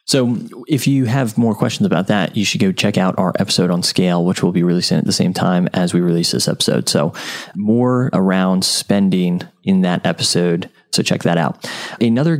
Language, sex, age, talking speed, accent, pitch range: English, male, 20-39, 205 wpm, American, 90-125 Hz